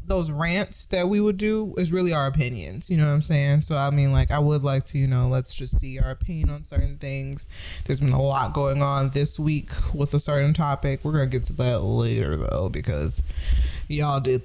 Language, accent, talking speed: English, American, 230 wpm